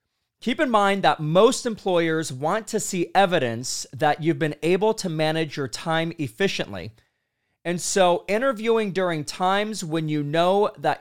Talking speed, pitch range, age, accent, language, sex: 155 wpm, 125-195 Hz, 30-49, American, English, male